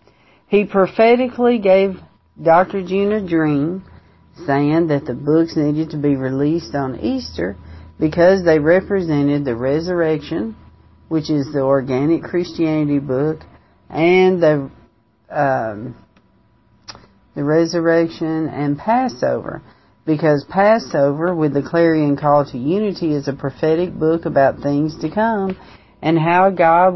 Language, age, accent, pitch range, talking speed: English, 50-69, American, 140-180 Hz, 120 wpm